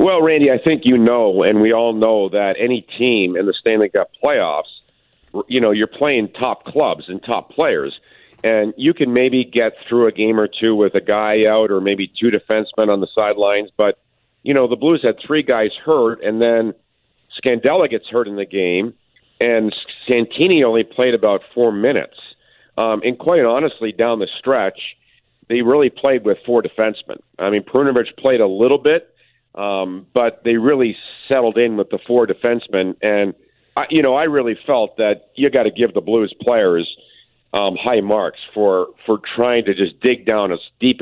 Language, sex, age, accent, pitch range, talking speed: English, male, 50-69, American, 105-125 Hz, 190 wpm